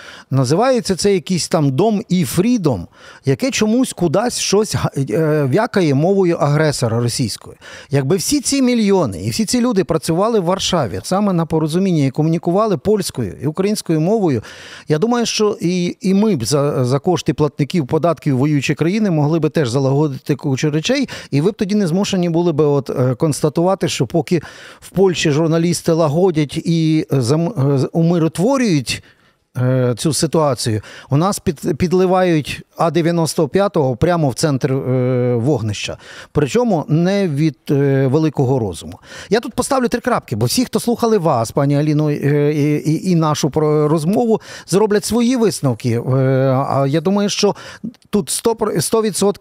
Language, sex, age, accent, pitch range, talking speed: Ukrainian, male, 50-69, native, 140-190 Hz, 135 wpm